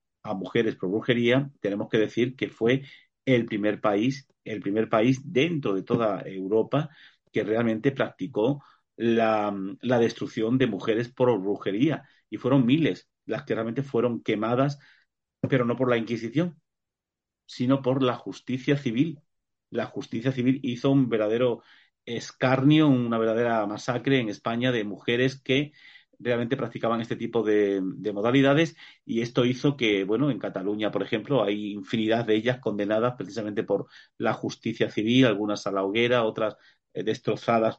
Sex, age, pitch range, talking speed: male, 40-59, 110-130 Hz, 150 wpm